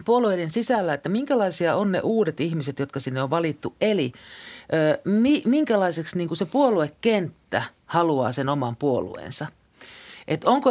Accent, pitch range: native, 150-210 Hz